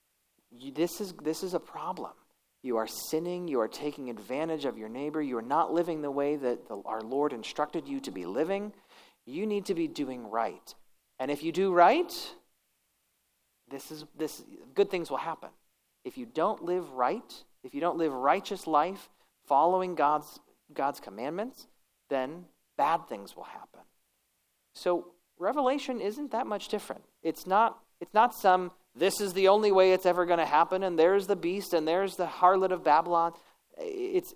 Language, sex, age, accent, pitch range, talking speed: English, male, 40-59, American, 140-190 Hz, 185 wpm